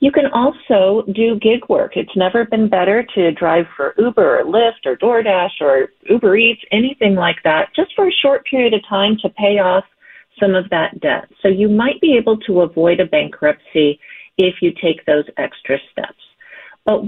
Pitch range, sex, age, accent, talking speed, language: 185-245 Hz, female, 40-59, American, 190 wpm, English